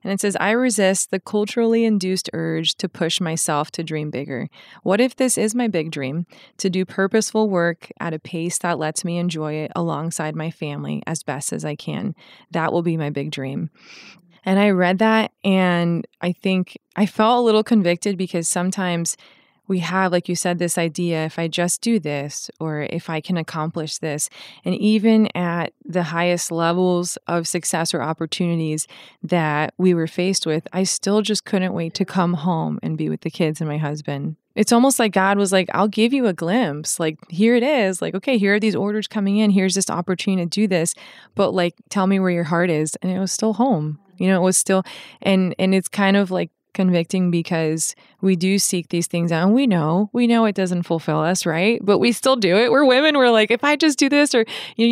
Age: 20-39